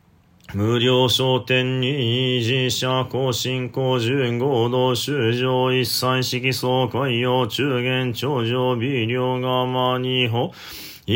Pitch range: 125-130 Hz